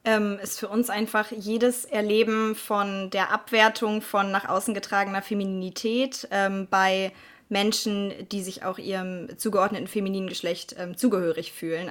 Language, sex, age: German, female, 20-39